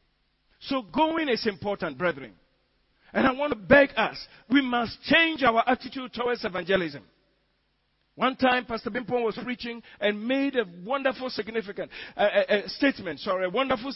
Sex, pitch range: male, 180-255 Hz